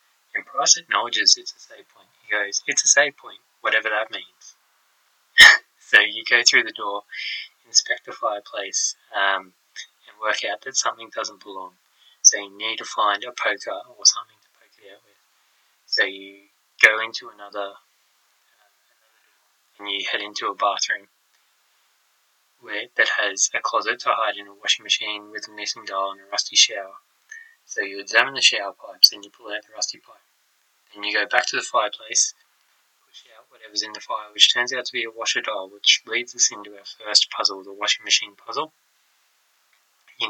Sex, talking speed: male, 185 wpm